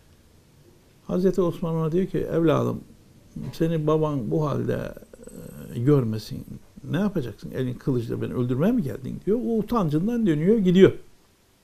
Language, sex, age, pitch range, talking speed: Turkish, male, 60-79, 125-180 Hz, 120 wpm